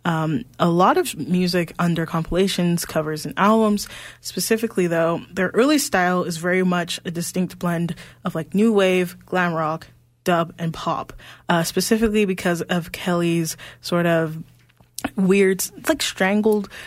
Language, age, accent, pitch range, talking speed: English, 10-29, American, 165-190 Hz, 140 wpm